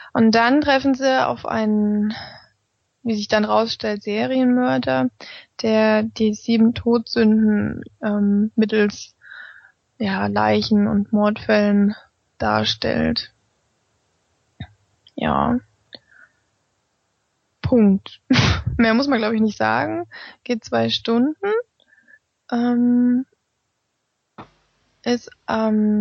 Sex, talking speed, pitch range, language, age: female, 85 wpm, 205-245 Hz, German, 20-39